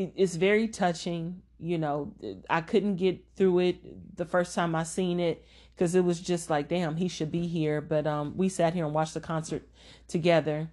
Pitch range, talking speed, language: 155-185 Hz, 200 wpm, English